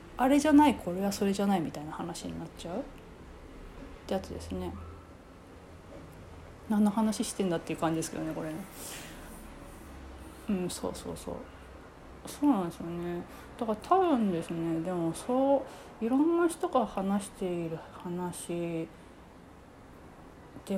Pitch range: 165-245 Hz